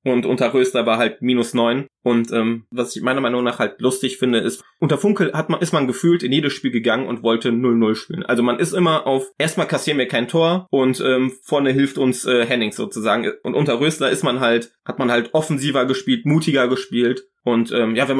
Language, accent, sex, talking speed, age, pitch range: German, German, male, 225 wpm, 20-39, 120-150 Hz